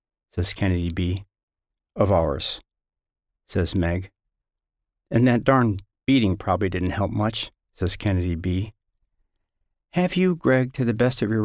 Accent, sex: American, male